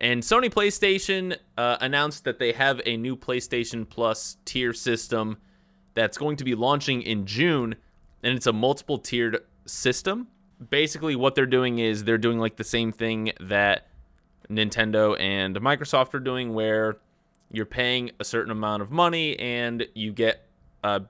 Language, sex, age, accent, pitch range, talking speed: English, male, 20-39, American, 105-130 Hz, 155 wpm